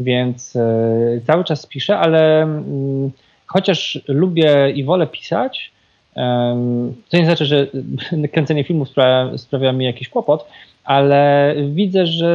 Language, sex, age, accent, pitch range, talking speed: Polish, male, 20-39, native, 125-155 Hz, 115 wpm